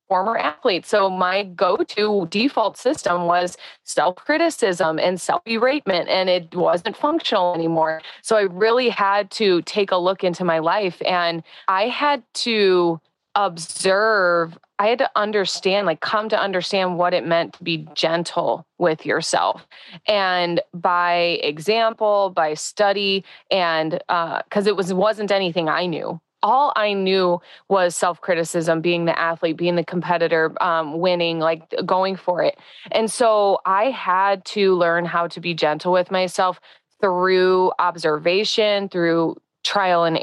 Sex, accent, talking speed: female, American, 145 wpm